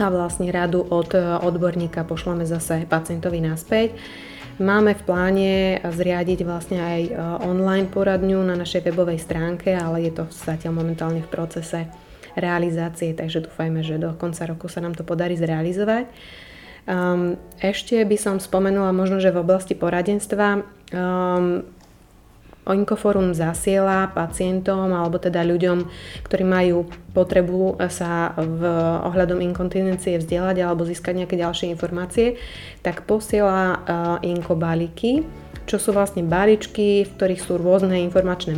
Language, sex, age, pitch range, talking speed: Slovak, female, 20-39, 170-190 Hz, 130 wpm